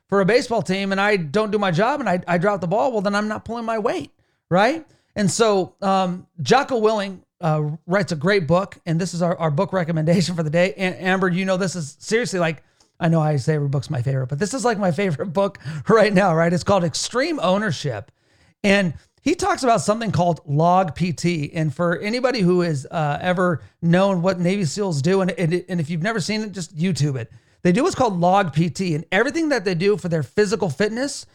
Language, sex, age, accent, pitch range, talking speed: English, male, 40-59, American, 160-210 Hz, 230 wpm